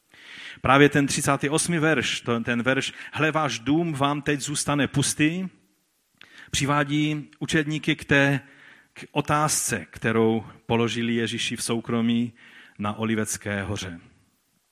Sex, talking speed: male, 110 wpm